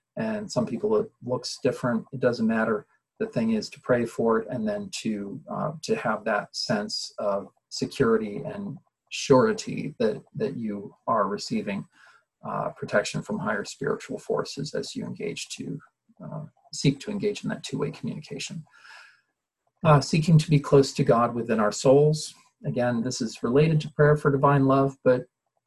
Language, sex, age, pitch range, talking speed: English, male, 40-59, 125-205 Hz, 170 wpm